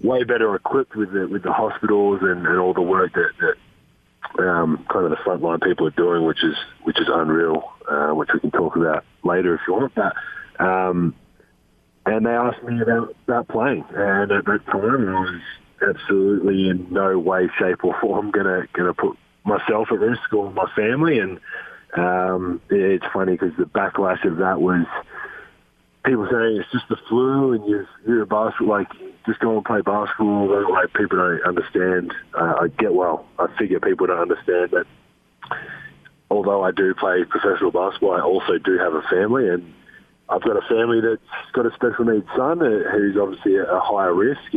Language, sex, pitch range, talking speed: English, male, 95-130 Hz, 190 wpm